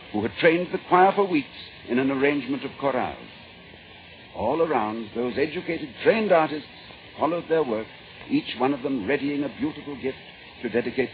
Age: 60-79